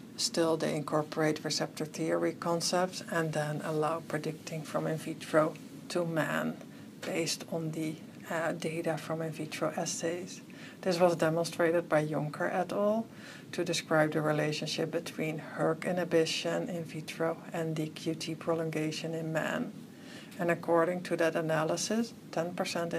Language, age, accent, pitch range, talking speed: English, 60-79, Dutch, 155-175 Hz, 135 wpm